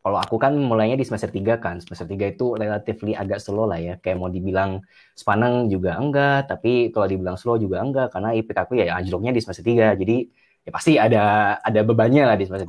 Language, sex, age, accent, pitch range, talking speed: Indonesian, male, 20-39, native, 95-115 Hz, 215 wpm